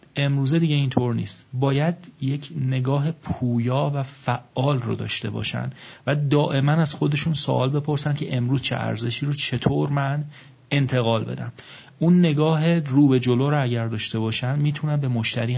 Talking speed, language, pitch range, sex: 160 wpm, Persian, 120-150 Hz, male